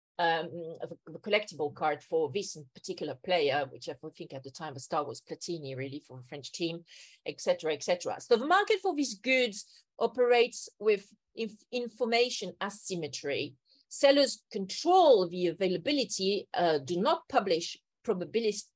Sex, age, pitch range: female, 40-59, 165-245 Hz